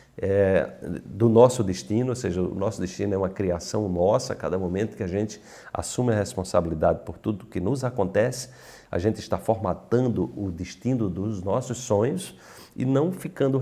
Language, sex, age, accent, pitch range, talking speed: Portuguese, male, 50-69, Brazilian, 95-130 Hz, 170 wpm